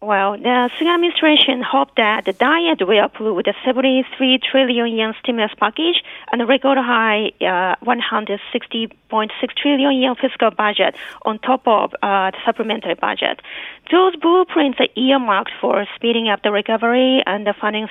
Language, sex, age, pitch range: Korean, female, 30-49, 215-270 Hz